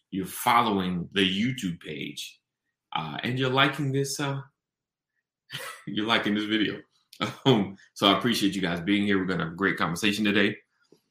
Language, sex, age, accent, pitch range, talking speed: English, male, 30-49, American, 100-130 Hz, 165 wpm